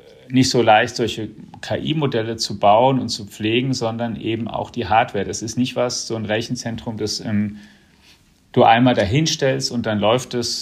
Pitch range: 105-120 Hz